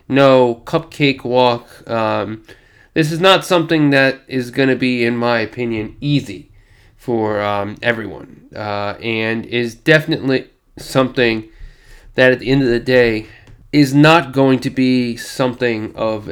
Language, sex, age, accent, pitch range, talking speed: English, male, 20-39, American, 110-140 Hz, 145 wpm